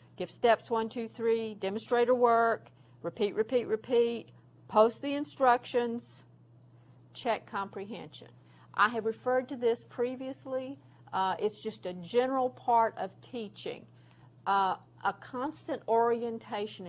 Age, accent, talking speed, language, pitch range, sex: 50-69, American, 115 wpm, English, 180-230 Hz, female